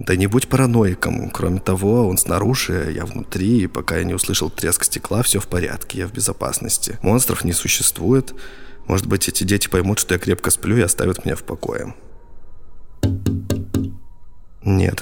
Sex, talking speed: male, 165 wpm